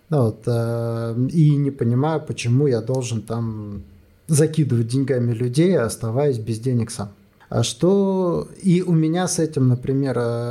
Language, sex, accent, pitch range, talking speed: Russian, male, native, 115-140 Hz, 125 wpm